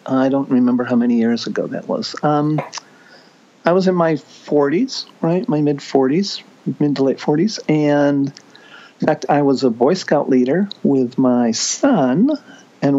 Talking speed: 160 wpm